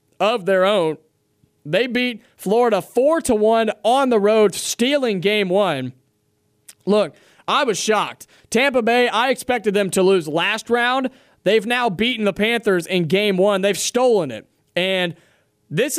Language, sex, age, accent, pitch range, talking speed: English, male, 30-49, American, 180-230 Hz, 155 wpm